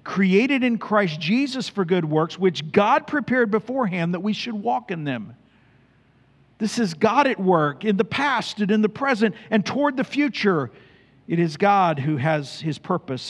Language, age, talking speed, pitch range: English, 50-69, 180 wpm, 135-200 Hz